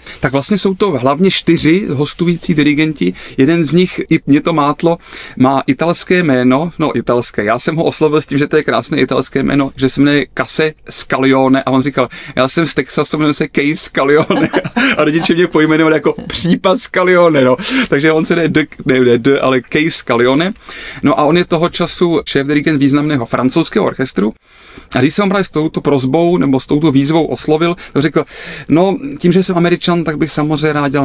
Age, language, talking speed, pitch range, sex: 30-49, Czech, 195 wpm, 130-165 Hz, male